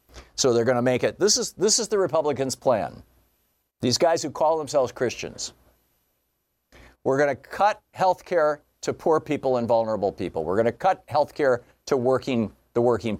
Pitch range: 110-170 Hz